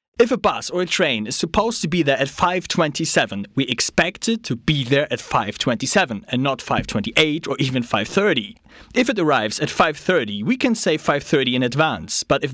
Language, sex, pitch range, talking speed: English, male, 125-180 Hz, 190 wpm